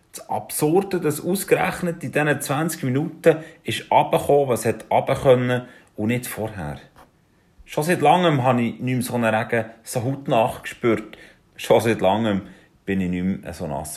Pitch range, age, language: 100-135 Hz, 30-49, German